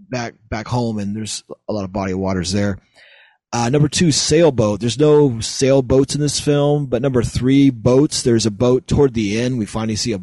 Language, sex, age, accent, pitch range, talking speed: English, male, 30-49, American, 110-140 Hz, 210 wpm